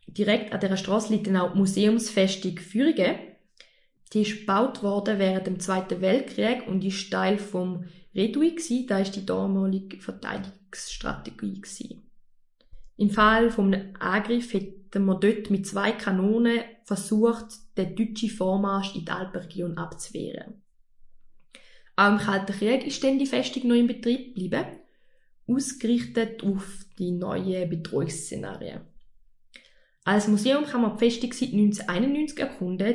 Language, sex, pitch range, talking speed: German, female, 190-230 Hz, 130 wpm